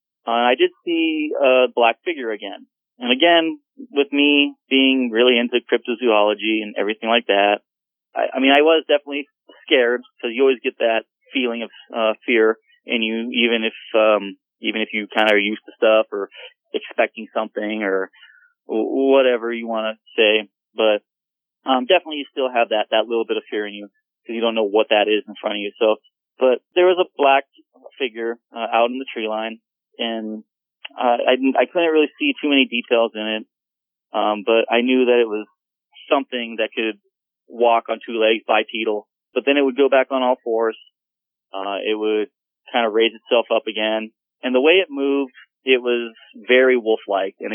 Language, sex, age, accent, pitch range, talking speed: English, male, 30-49, American, 110-135 Hz, 190 wpm